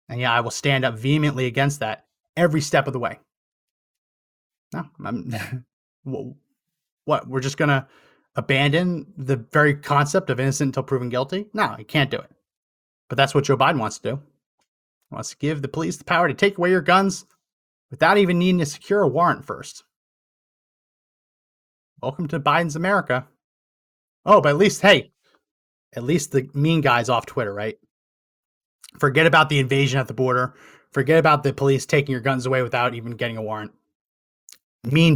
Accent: American